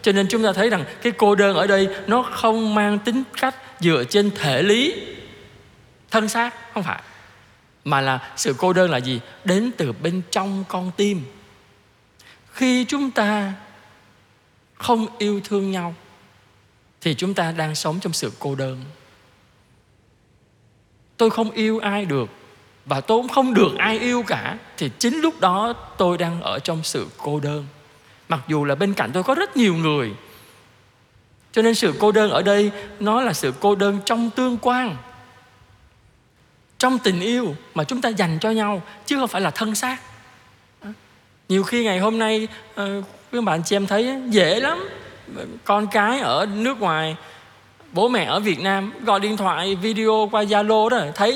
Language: Vietnamese